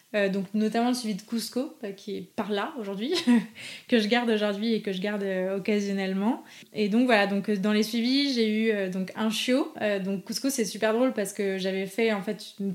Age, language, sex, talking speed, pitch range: 20-39, French, female, 235 wpm, 195-230 Hz